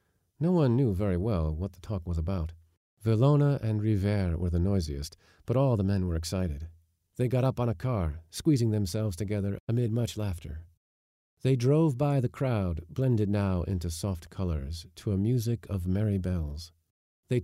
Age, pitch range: 50-69, 85-125 Hz